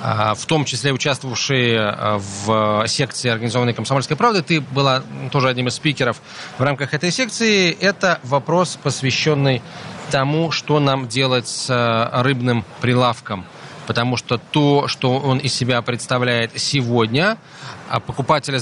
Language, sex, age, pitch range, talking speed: Russian, male, 20-39, 120-155 Hz, 125 wpm